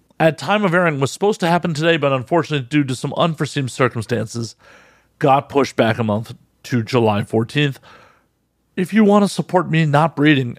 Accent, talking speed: American, 185 wpm